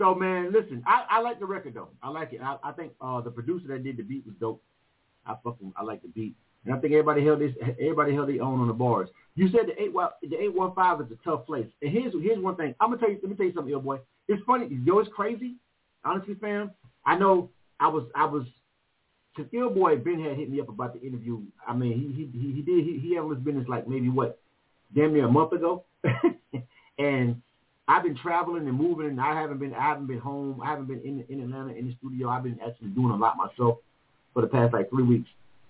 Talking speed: 255 wpm